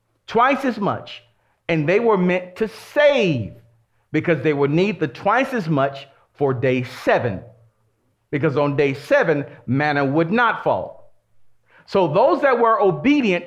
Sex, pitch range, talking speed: male, 125-195 Hz, 145 wpm